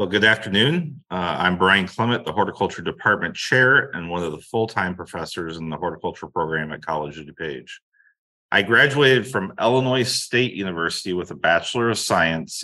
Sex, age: male, 30-49